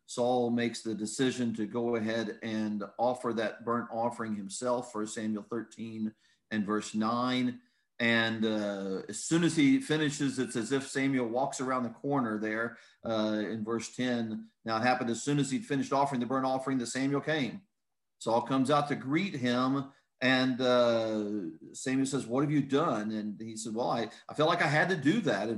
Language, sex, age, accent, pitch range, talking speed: English, male, 40-59, American, 115-140 Hz, 190 wpm